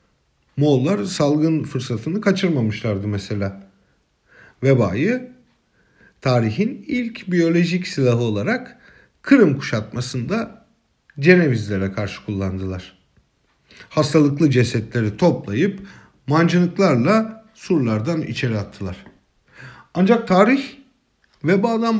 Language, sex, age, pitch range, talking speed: German, male, 50-69, 110-180 Hz, 70 wpm